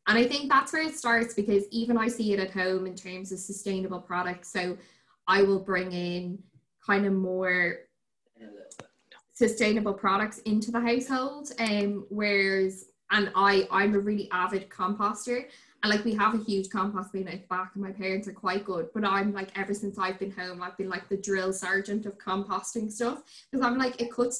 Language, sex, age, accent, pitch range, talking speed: English, female, 10-29, Irish, 190-220 Hz, 195 wpm